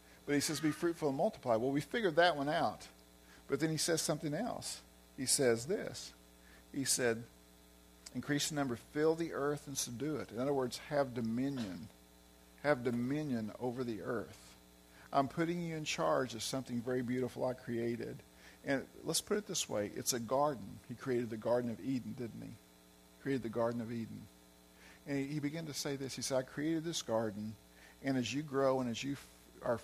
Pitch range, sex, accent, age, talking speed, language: 90-140 Hz, male, American, 50-69, 195 wpm, English